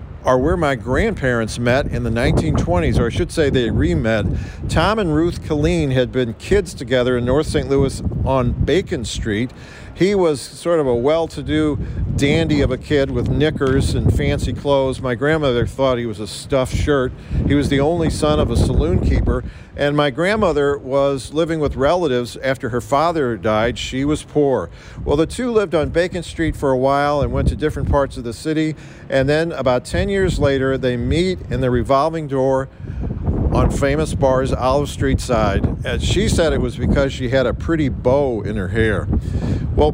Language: English